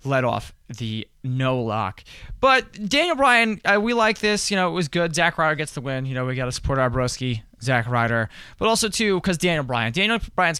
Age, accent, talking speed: 20-39, American, 220 wpm